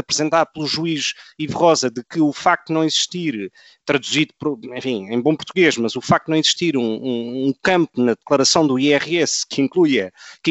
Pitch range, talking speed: 135-165 Hz, 170 wpm